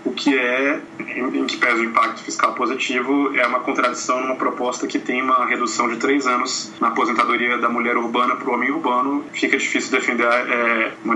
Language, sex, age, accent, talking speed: Portuguese, male, 20-39, Brazilian, 200 wpm